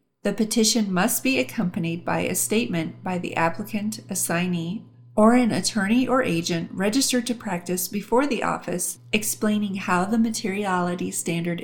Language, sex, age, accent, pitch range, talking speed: English, female, 40-59, American, 170-215 Hz, 145 wpm